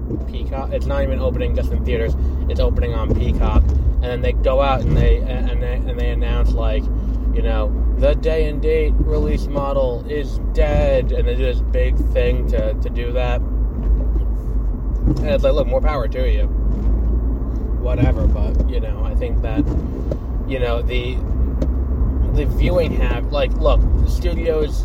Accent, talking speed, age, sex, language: American, 170 wpm, 20-39, male, English